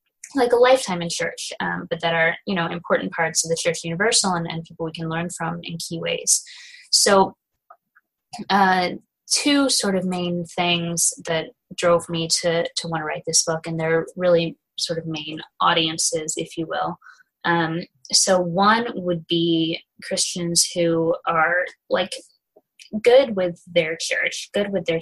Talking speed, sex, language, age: 170 wpm, female, English, 20-39